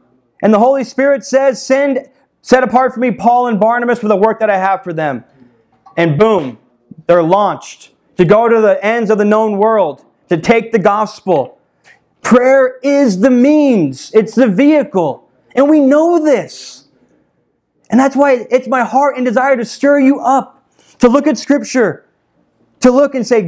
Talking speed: 175 wpm